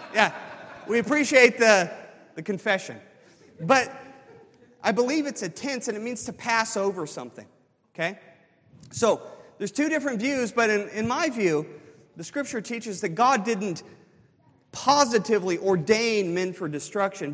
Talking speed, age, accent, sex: 140 wpm, 40-59, American, male